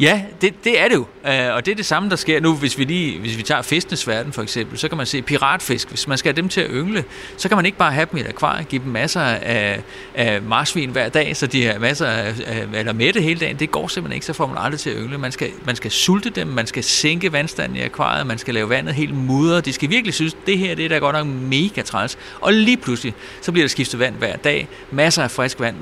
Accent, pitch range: native, 120-160 Hz